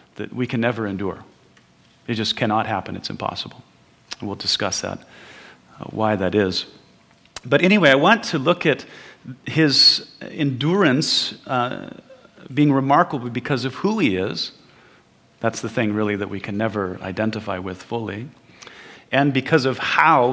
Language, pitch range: English, 110-145 Hz